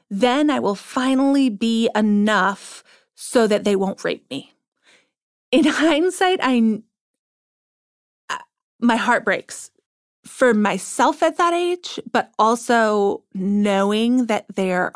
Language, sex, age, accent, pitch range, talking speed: English, female, 30-49, American, 200-240 Hz, 110 wpm